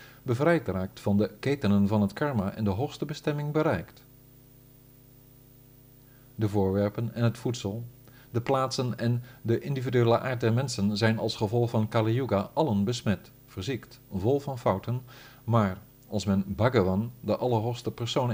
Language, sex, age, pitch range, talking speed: Dutch, male, 50-69, 110-125 Hz, 145 wpm